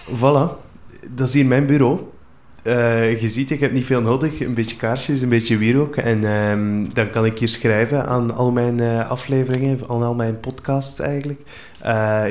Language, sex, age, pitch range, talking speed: Dutch, male, 20-39, 110-125 Hz, 180 wpm